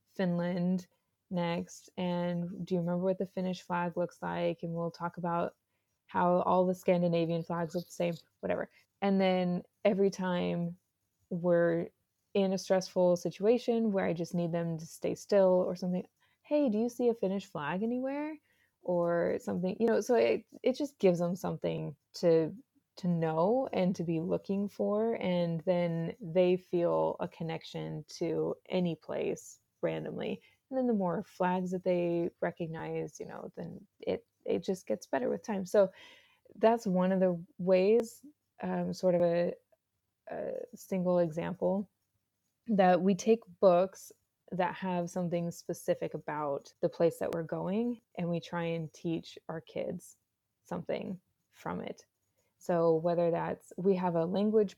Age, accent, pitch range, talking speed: 20-39, American, 170-195 Hz, 155 wpm